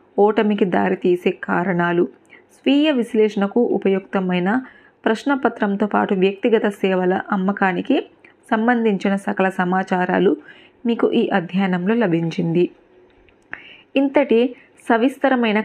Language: Telugu